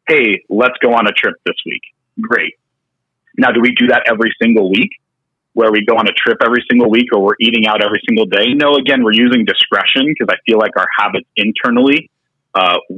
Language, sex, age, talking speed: English, male, 30-49, 215 wpm